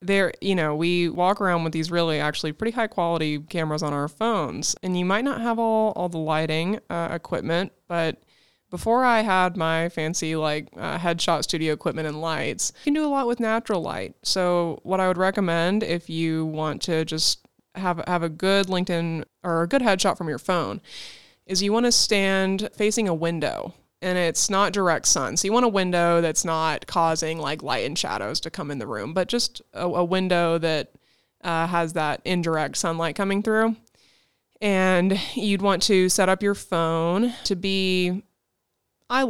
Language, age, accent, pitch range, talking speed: English, 20-39, American, 160-195 Hz, 190 wpm